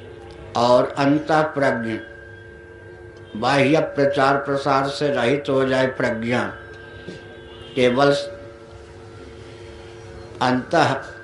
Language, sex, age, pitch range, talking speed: Hindi, male, 60-79, 115-140 Hz, 70 wpm